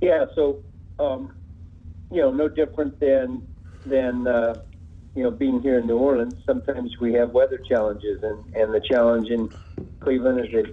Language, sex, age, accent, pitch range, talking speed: English, male, 50-69, American, 105-130 Hz, 170 wpm